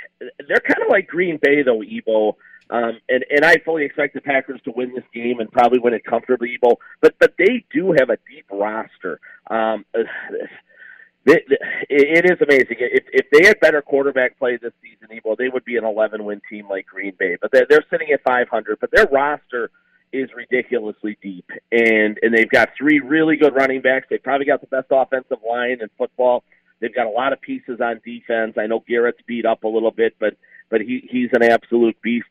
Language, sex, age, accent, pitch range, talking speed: English, male, 40-59, American, 115-155 Hz, 215 wpm